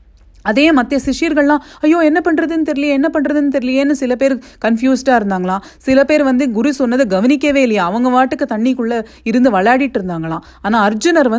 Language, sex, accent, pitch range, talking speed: English, female, Indian, 195-270 Hz, 200 wpm